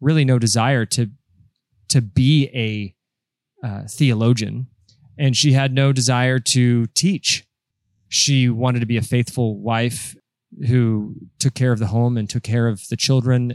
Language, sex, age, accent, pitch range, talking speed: English, male, 20-39, American, 110-135 Hz, 155 wpm